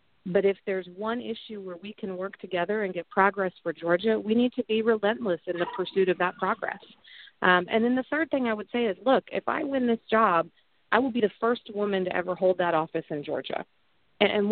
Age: 40-59